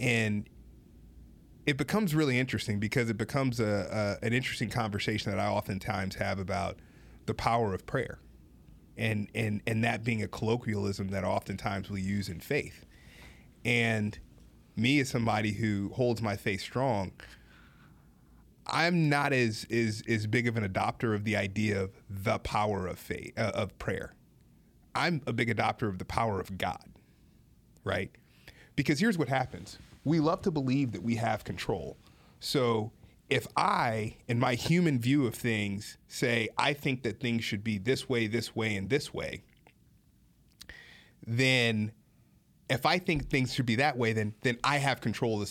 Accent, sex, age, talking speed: American, male, 30-49, 165 wpm